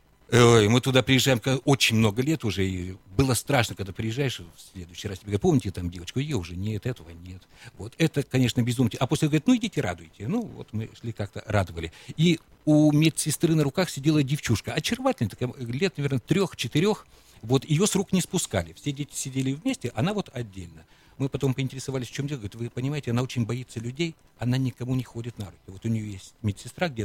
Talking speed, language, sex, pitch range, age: 205 wpm, Russian, male, 95-130 Hz, 60-79